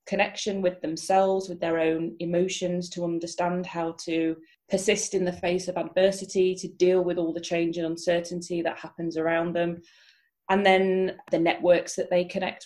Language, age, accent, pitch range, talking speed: English, 30-49, British, 165-180 Hz, 170 wpm